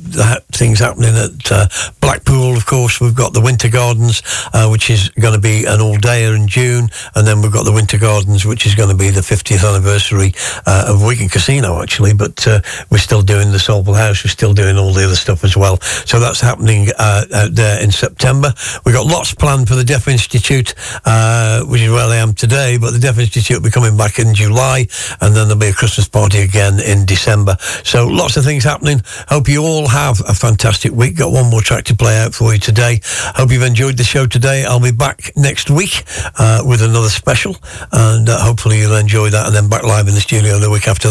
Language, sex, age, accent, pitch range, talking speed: English, male, 60-79, British, 105-120 Hz, 230 wpm